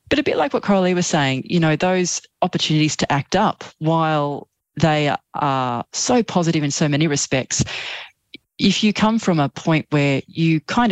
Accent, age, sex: Australian, 30-49, female